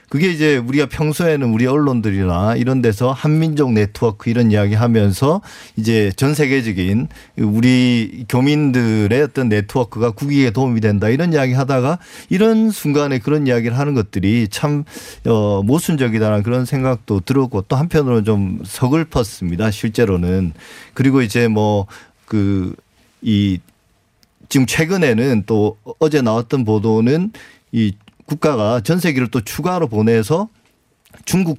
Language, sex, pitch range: Korean, male, 110-150 Hz